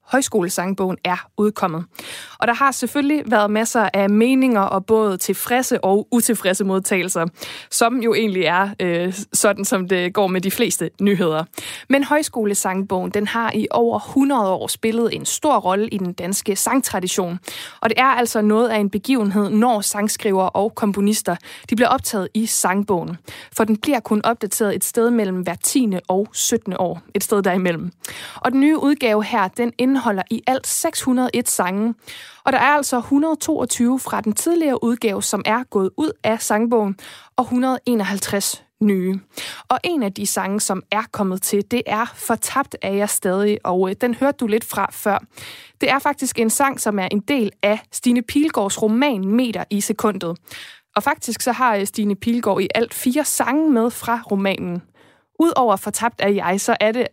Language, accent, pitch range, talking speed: Danish, native, 195-245 Hz, 175 wpm